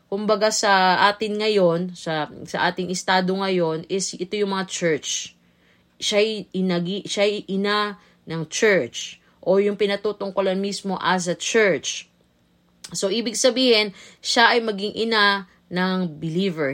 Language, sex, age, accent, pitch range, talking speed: Filipino, female, 20-39, native, 175-240 Hz, 130 wpm